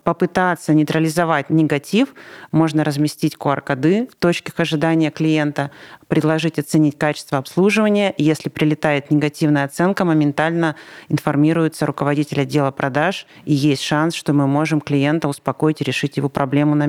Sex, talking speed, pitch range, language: male, 130 wpm, 145-165 Hz, Russian